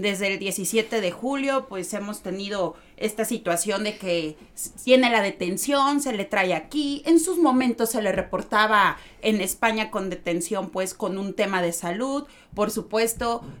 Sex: female